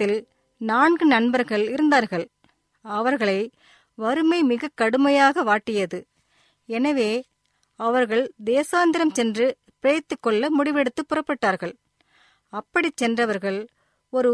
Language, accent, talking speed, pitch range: Tamil, native, 75 wpm, 225-295 Hz